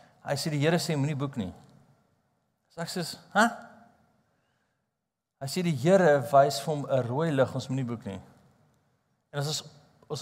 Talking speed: 175 wpm